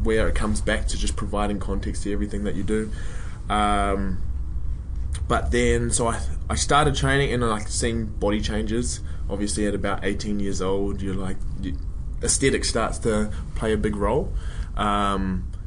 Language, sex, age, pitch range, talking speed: English, male, 20-39, 95-120 Hz, 165 wpm